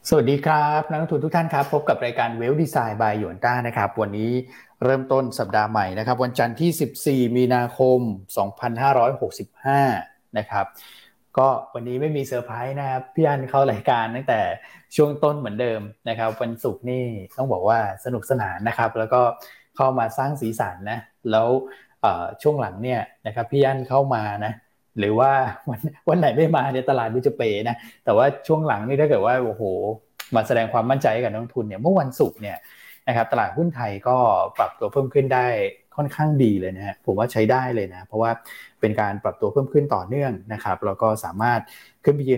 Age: 20-39